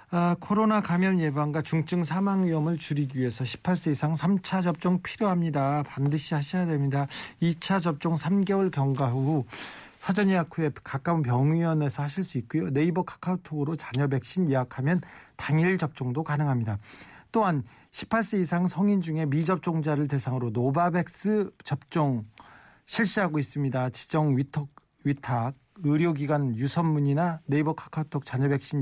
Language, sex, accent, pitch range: Korean, male, native, 135-175 Hz